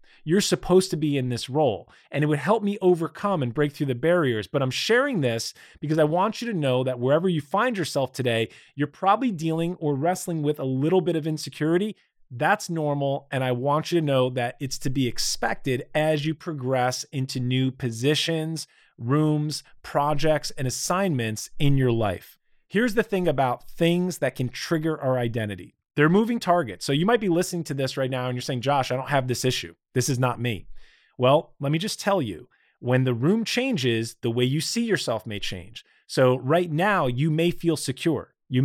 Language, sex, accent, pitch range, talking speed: English, male, American, 125-165 Hz, 205 wpm